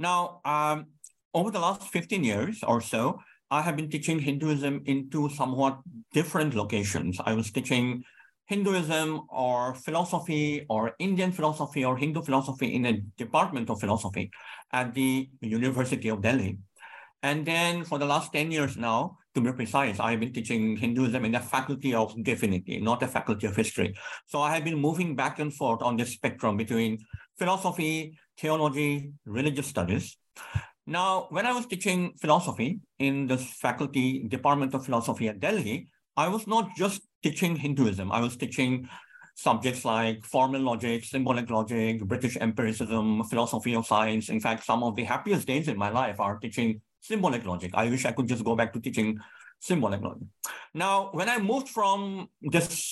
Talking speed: 170 wpm